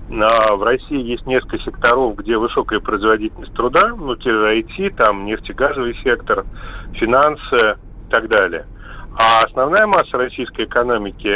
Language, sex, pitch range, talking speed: Russian, male, 115-140 Hz, 120 wpm